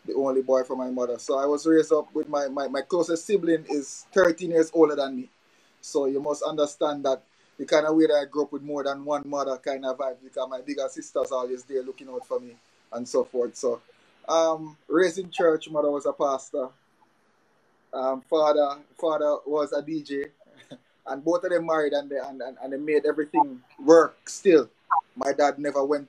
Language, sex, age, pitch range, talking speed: English, male, 20-39, 130-160 Hz, 210 wpm